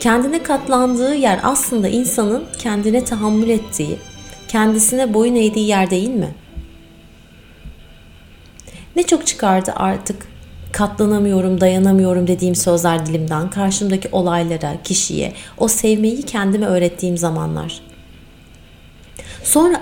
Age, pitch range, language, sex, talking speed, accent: 30-49, 170-245 Hz, Turkish, female, 95 wpm, native